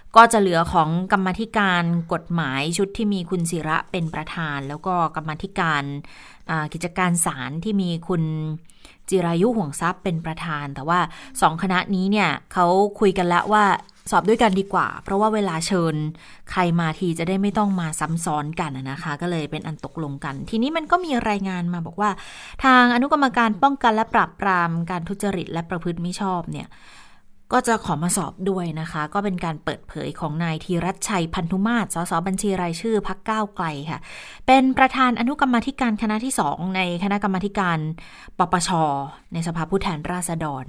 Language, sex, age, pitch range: Thai, female, 20-39, 165-200 Hz